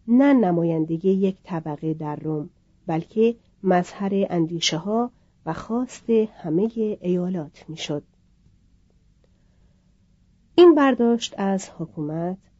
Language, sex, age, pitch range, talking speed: Persian, female, 40-59, 170-230 Hz, 90 wpm